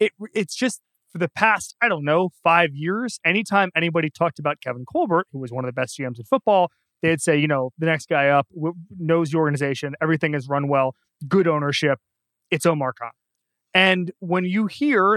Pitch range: 135-175 Hz